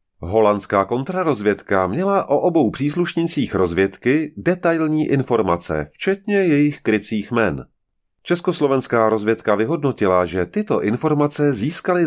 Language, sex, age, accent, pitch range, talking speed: Czech, male, 30-49, native, 95-155 Hz, 100 wpm